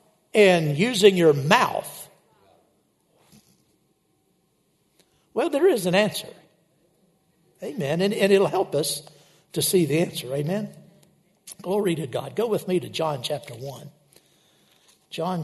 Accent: American